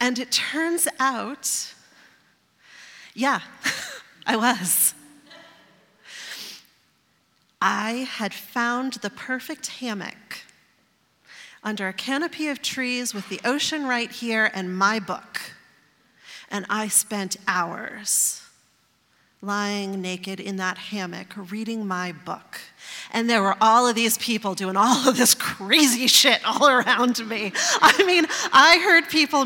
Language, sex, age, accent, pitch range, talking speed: English, female, 40-59, American, 210-270 Hz, 120 wpm